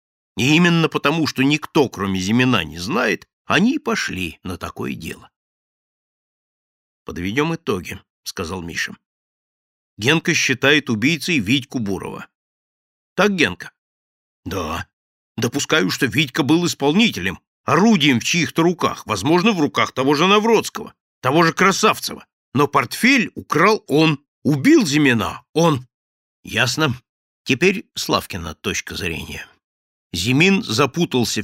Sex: male